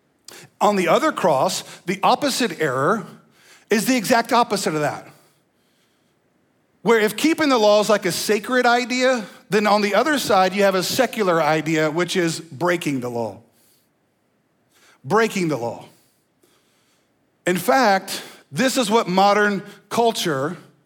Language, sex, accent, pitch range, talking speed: English, male, American, 190-255 Hz, 140 wpm